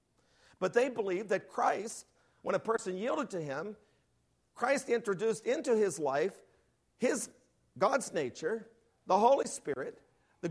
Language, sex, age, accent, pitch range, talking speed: English, male, 50-69, American, 150-200 Hz, 125 wpm